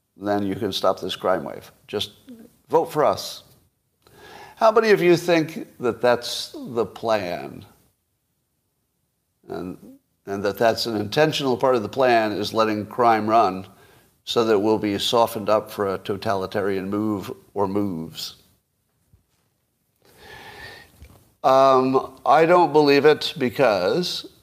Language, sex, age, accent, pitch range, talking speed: English, male, 50-69, American, 100-130 Hz, 130 wpm